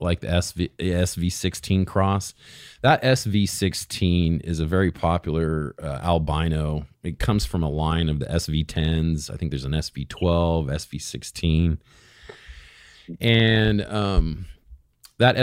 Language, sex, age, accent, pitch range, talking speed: English, male, 40-59, American, 75-95 Hz, 115 wpm